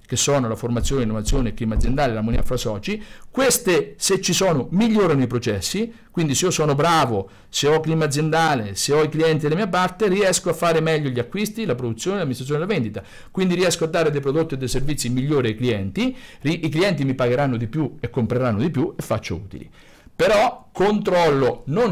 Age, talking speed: 50-69, 205 wpm